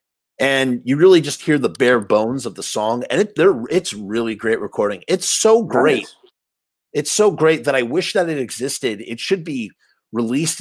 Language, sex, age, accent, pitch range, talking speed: English, male, 30-49, American, 120-160 Hz, 190 wpm